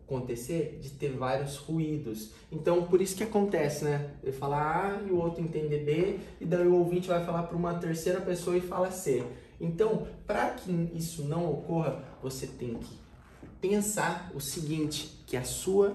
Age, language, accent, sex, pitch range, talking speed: 20-39, Portuguese, Brazilian, male, 150-190 Hz, 175 wpm